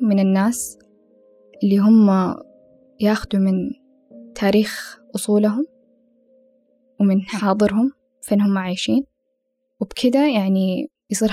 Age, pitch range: 10-29, 190-230 Hz